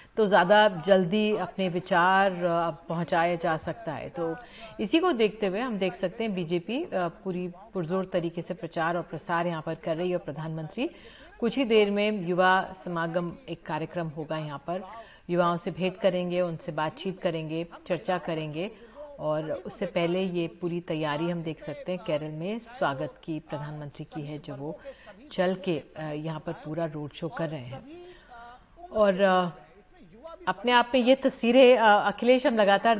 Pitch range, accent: 170-210 Hz, native